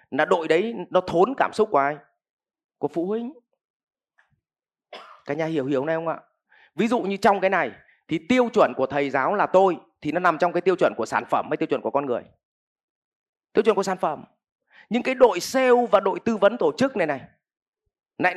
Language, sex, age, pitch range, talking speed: Vietnamese, male, 30-49, 150-225 Hz, 215 wpm